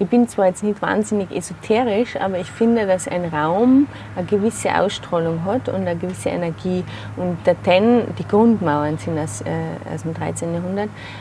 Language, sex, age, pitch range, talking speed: German, female, 30-49, 160-195 Hz, 175 wpm